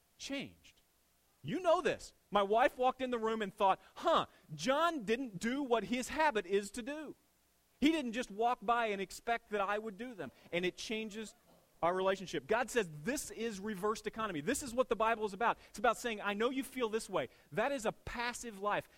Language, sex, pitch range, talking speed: English, male, 155-225 Hz, 210 wpm